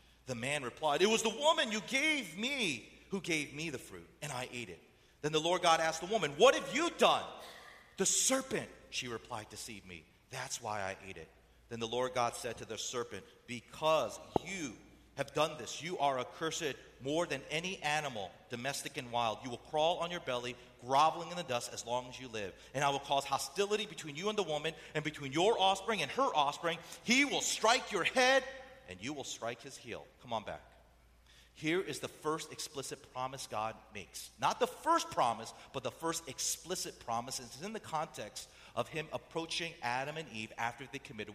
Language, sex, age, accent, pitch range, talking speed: English, male, 40-59, American, 120-170 Hz, 205 wpm